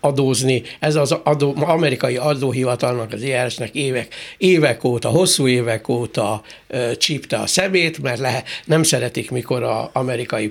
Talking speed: 150 wpm